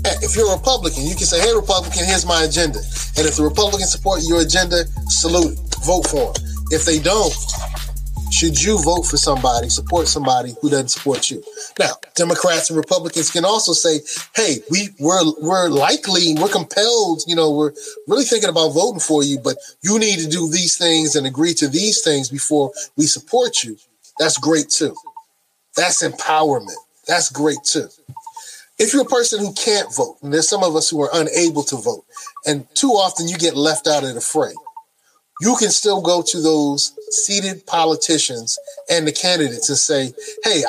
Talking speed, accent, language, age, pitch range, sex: 185 wpm, American, English, 30-49, 150-245 Hz, male